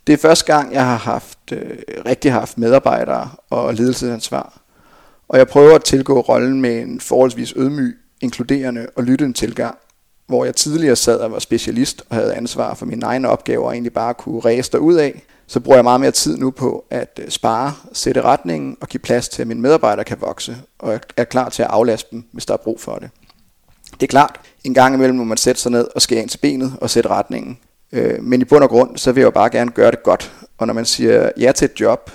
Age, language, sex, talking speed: 30-49, English, male, 225 wpm